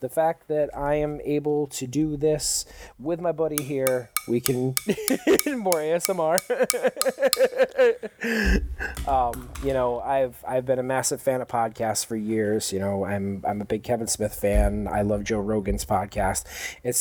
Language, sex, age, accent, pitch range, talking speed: English, male, 30-49, American, 110-150 Hz, 160 wpm